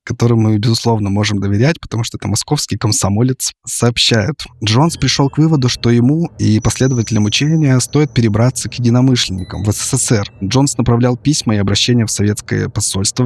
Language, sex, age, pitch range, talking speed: Russian, male, 20-39, 105-125 Hz, 155 wpm